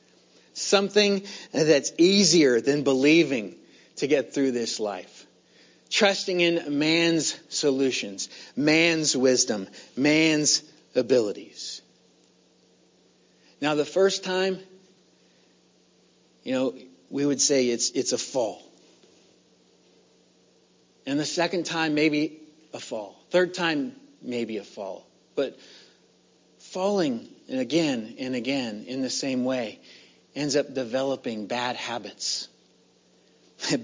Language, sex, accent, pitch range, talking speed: English, male, American, 115-165 Hz, 100 wpm